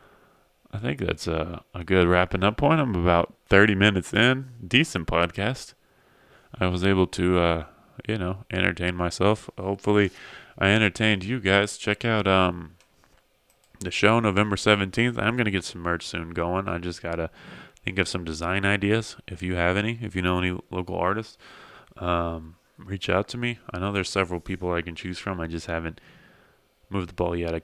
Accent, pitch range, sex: American, 85-100 Hz, male